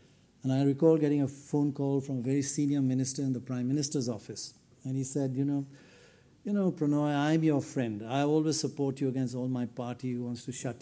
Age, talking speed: 50-69, 220 wpm